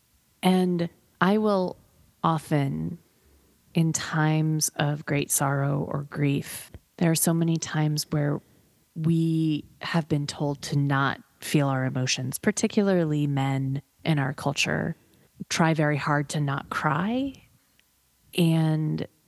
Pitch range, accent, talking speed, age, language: 145-175 Hz, American, 120 wpm, 30-49, English